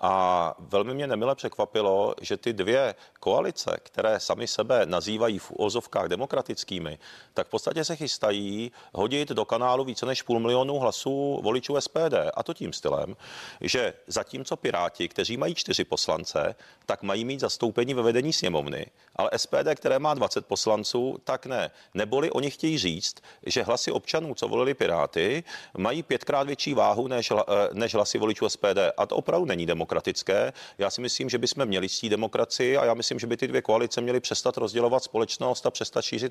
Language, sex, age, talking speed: Czech, male, 40-59, 175 wpm